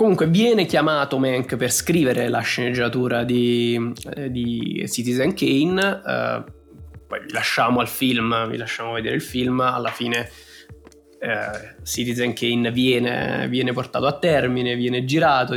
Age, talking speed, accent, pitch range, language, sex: 20-39, 125 wpm, native, 120-145 Hz, Italian, male